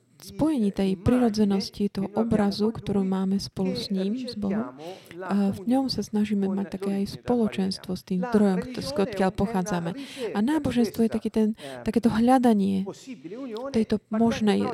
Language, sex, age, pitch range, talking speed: Slovak, female, 20-39, 195-220 Hz, 145 wpm